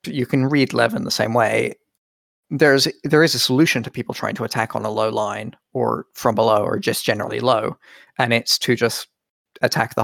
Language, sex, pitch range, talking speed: English, male, 120-135 Hz, 210 wpm